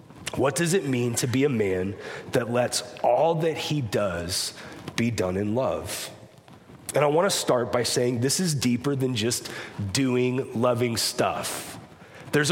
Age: 30-49